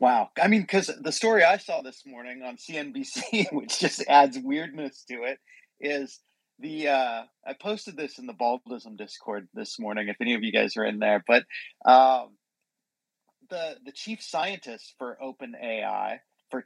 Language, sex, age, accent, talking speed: English, male, 40-59, American, 170 wpm